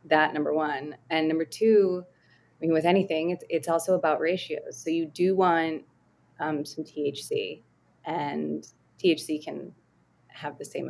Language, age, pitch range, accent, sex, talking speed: English, 20-39, 150-170 Hz, American, female, 155 wpm